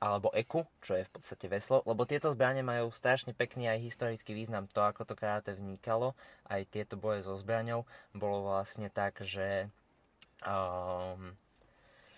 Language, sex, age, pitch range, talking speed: Slovak, male, 20-39, 95-115 Hz, 155 wpm